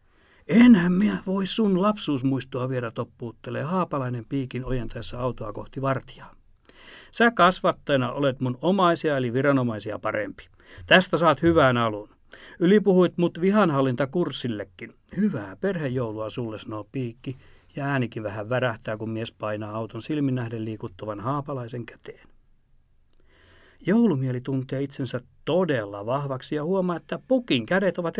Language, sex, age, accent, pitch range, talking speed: Finnish, male, 60-79, native, 115-170 Hz, 125 wpm